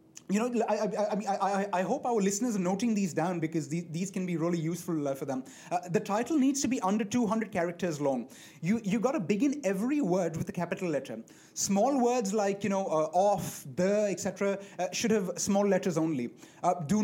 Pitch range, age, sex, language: 170-225 Hz, 30-49, male, English